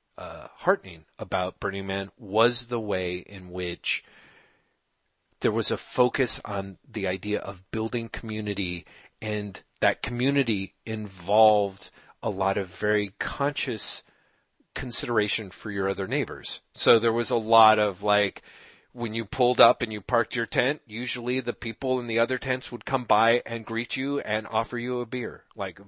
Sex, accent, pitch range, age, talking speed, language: male, American, 100-125 Hz, 40-59, 160 wpm, English